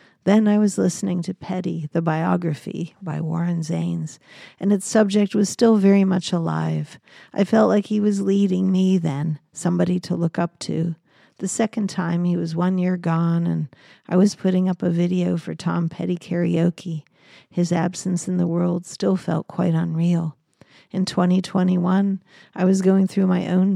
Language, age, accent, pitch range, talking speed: English, 50-69, American, 170-190 Hz, 170 wpm